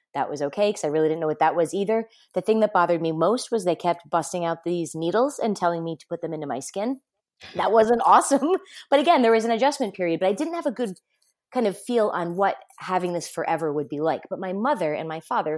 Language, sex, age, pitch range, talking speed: English, female, 30-49, 155-215 Hz, 260 wpm